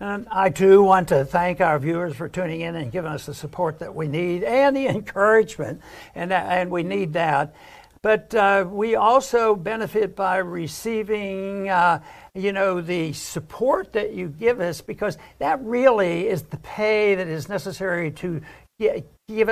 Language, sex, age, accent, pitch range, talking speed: English, male, 60-79, American, 170-205 Hz, 165 wpm